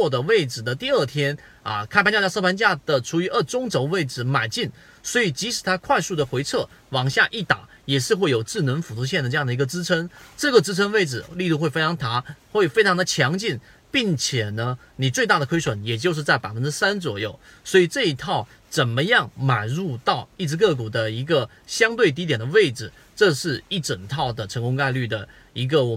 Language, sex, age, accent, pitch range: Chinese, male, 30-49, native, 125-170 Hz